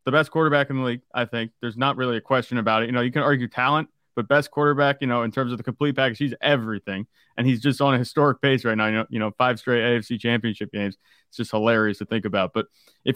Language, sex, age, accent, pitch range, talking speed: English, male, 30-49, American, 120-145 Hz, 275 wpm